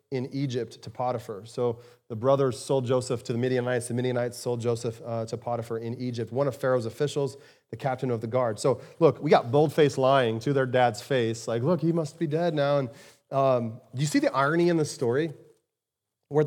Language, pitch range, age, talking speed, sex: English, 130-165 Hz, 30-49, 210 wpm, male